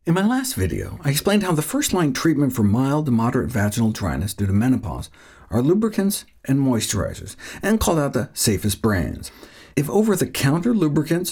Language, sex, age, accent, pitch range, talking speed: English, male, 50-69, American, 110-150 Hz, 170 wpm